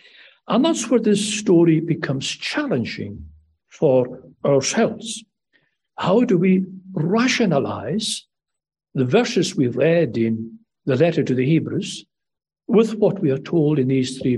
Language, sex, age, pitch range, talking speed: English, male, 60-79, 130-205 Hz, 130 wpm